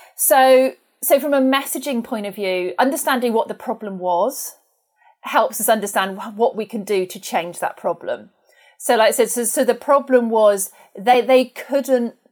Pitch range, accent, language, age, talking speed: 190-235 Hz, British, English, 40-59, 175 wpm